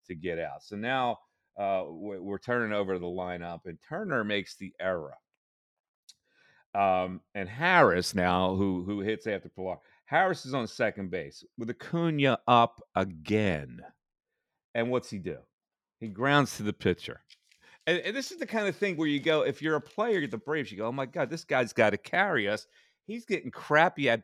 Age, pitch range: 40-59, 110-160 Hz